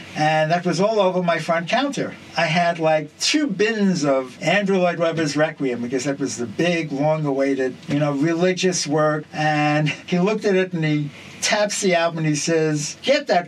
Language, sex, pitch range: English, male, 145-185 Hz